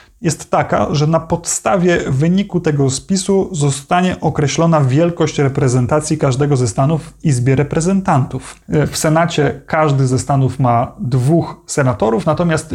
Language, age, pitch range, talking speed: Polish, 30-49, 140-165 Hz, 125 wpm